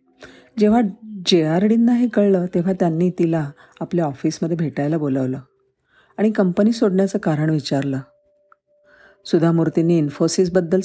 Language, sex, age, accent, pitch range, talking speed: Marathi, female, 50-69, native, 150-210 Hz, 75 wpm